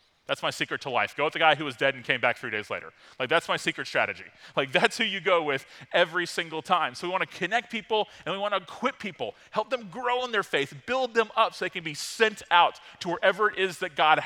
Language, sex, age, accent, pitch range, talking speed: English, male, 30-49, American, 155-220 Hz, 275 wpm